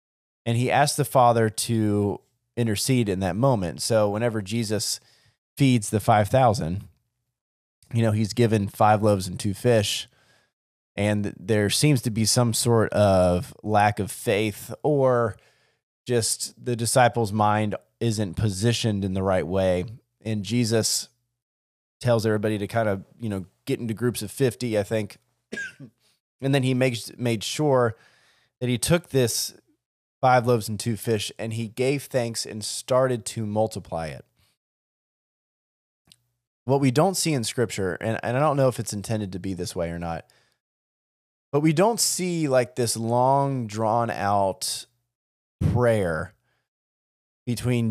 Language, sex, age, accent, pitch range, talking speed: English, male, 30-49, American, 105-125 Hz, 150 wpm